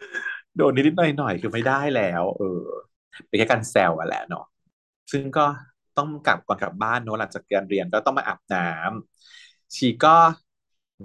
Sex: male